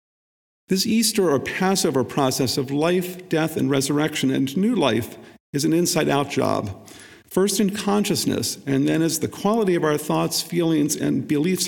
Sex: male